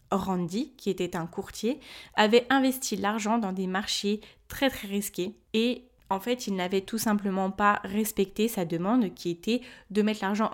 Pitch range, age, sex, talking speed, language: 190-240 Hz, 20-39, female, 170 wpm, French